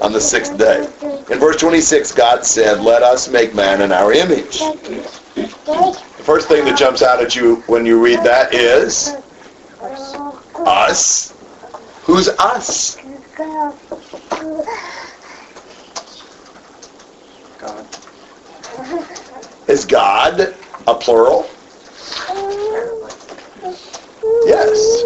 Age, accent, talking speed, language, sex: 50-69, American, 90 wpm, English, male